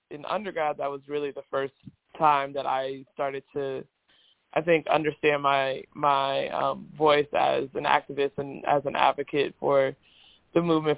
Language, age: English, 20-39